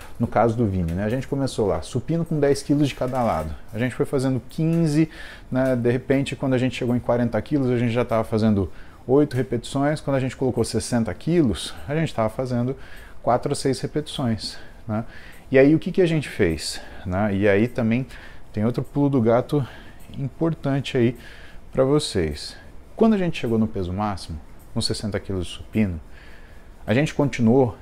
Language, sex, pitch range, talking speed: Portuguese, male, 105-140 Hz, 190 wpm